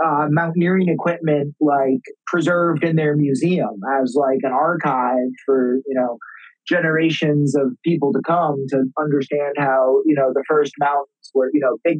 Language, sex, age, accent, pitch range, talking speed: English, male, 30-49, American, 145-175 Hz, 160 wpm